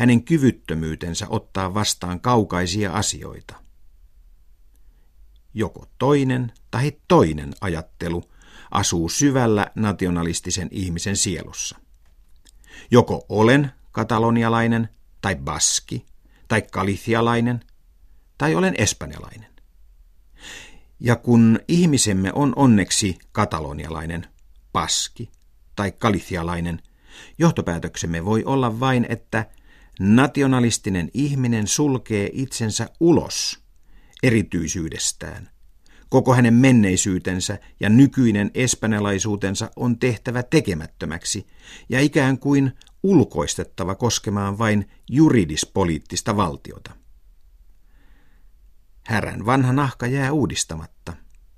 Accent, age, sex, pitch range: native, 50-69, male, 80-120 Hz